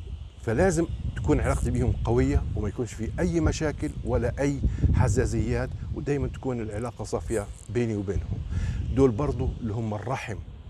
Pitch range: 95-120 Hz